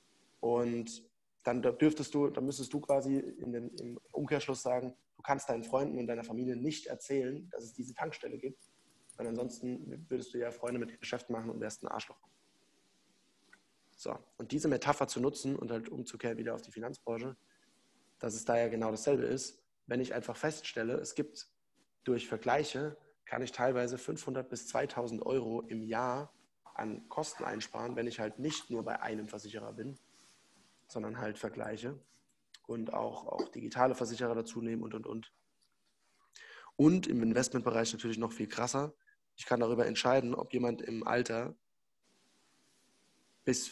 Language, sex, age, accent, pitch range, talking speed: German, male, 20-39, German, 115-135 Hz, 165 wpm